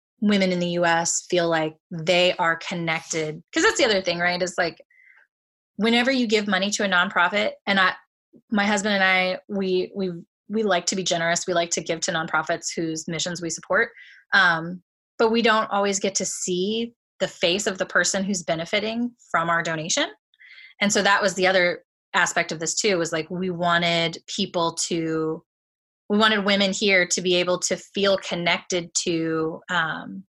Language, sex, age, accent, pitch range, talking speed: English, female, 20-39, American, 170-210 Hz, 185 wpm